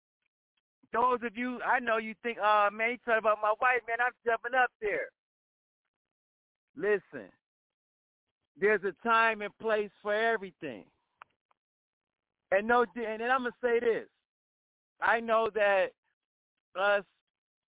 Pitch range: 210-285 Hz